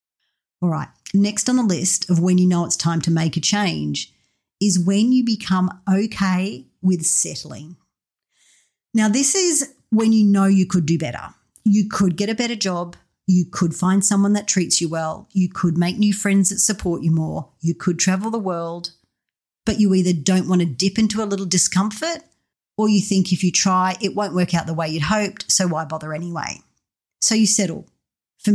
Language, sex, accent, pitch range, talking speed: English, female, Australian, 175-210 Hz, 200 wpm